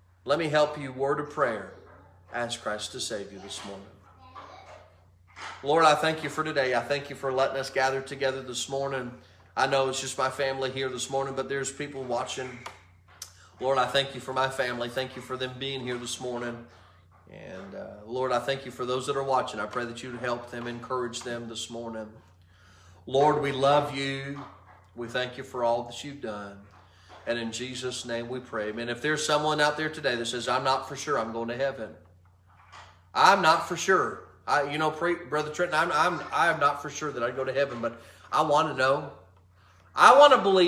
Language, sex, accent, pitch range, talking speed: English, male, American, 95-140 Hz, 205 wpm